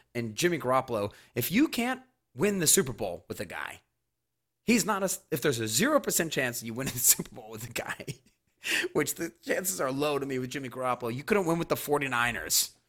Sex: male